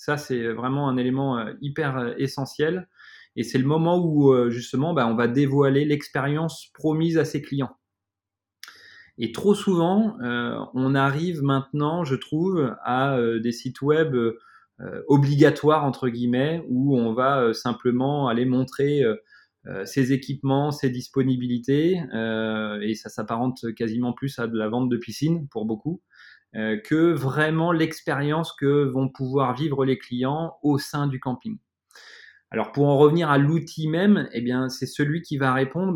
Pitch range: 120-155 Hz